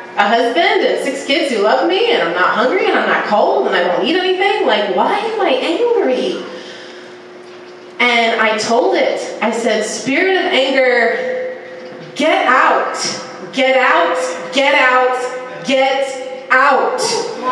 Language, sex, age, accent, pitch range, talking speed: English, female, 30-49, American, 240-335 Hz, 145 wpm